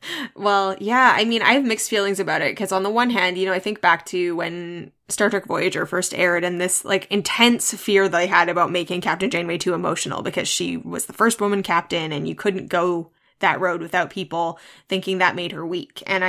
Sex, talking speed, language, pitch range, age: female, 225 wpm, English, 175-195 Hz, 10-29